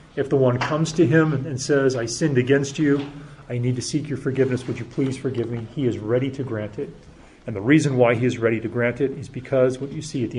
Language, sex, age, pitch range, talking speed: English, male, 30-49, 115-140 Hz, 265 wpm